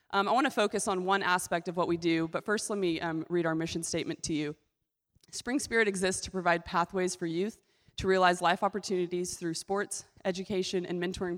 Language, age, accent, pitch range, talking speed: English, 20-39, American, 170-195 Hz, 210 wpm